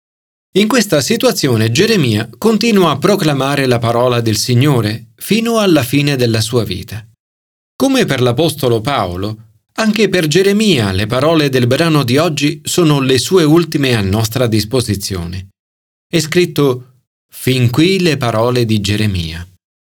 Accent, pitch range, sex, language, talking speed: native, 105-160 Hz, male, Italian, 135 wpm